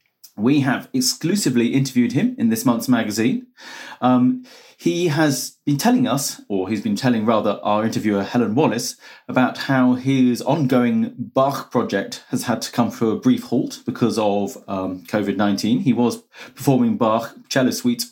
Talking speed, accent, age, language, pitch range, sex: 160 wpm, British, 40-59, English, 115-145 Hz, male